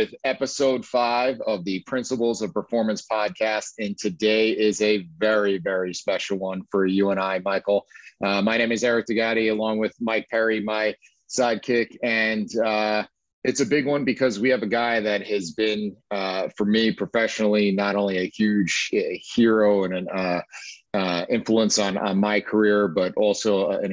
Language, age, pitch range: English, 40-59, 100-110 Hz